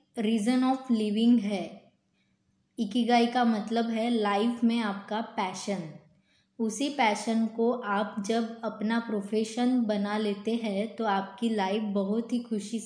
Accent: native